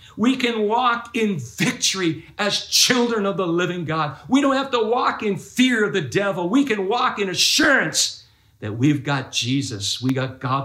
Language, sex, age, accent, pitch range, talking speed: English, male, 50-69, American, 125-175 Hz, 185 wpm